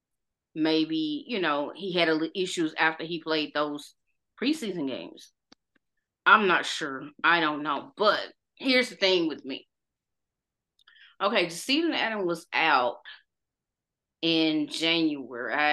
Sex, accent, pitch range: female, American, 155-185 Hz